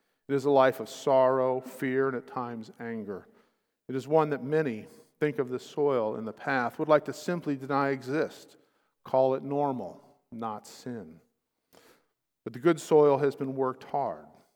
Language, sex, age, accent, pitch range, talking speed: English, male, 50-69, American, 125-150 Hz, 175 wpm